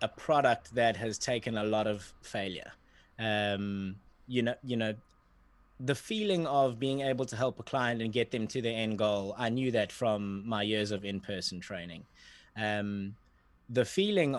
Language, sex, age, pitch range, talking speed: English, male, 20-39, 105-125 Hz, 175 wpm